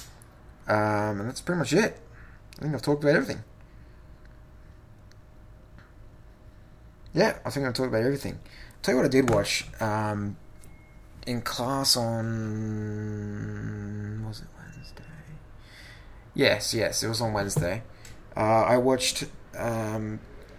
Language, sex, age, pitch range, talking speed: English, male, 20-39, 105-125 Hz, 120 wpm